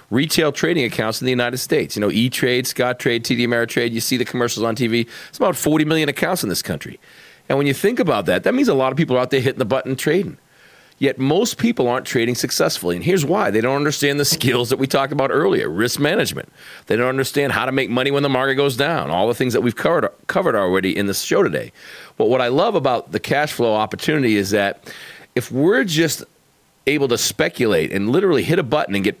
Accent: American